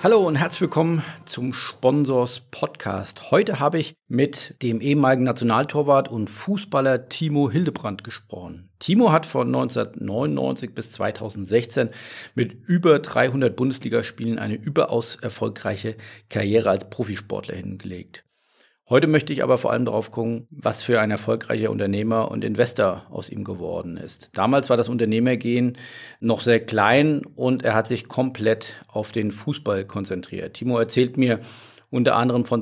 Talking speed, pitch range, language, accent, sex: 140 wpm, 110-130 Hz, German, German, male